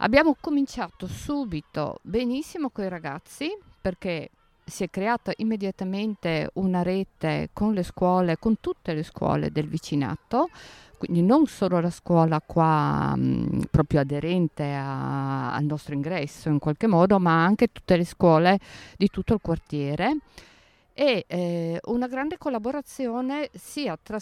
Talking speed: 130 wpm